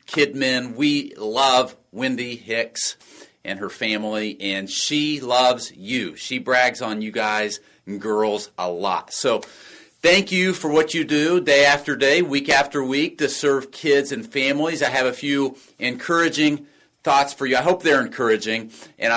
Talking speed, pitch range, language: 165 wpm, 110-145 Hz, English